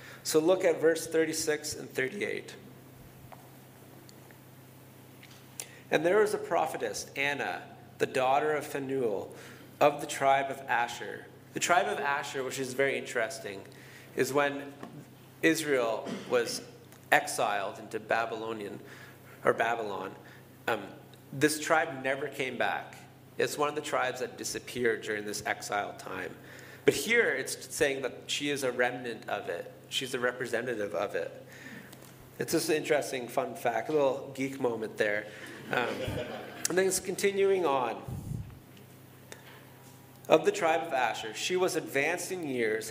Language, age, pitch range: English, 30-49, 130-160 Hz